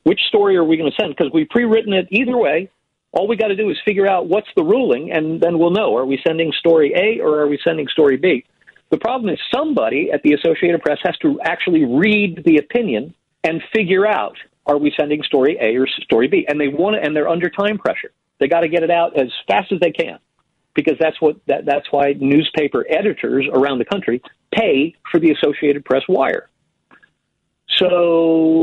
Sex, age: male, 50-69